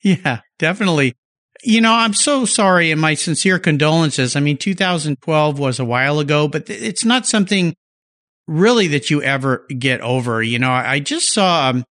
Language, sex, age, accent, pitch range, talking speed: English, male, 50-69, American, 125-175 Hz, 165 wpm